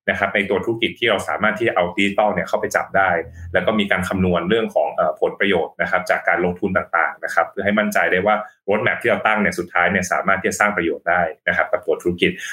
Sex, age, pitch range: male, 20-39, 90-105 Hz